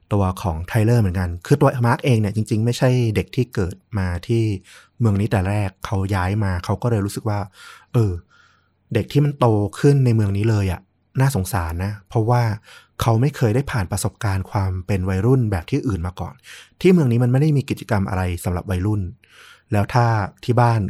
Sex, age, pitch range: male, 20-39, 95-120 Hz